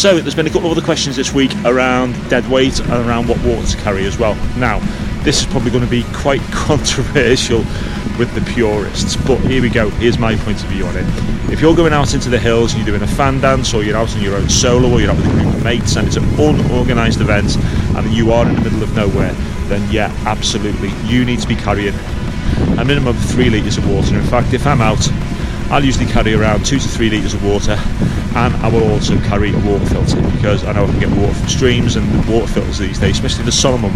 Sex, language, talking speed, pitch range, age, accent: male, English, 250 wpm, 100-120 Hz, 30-49, British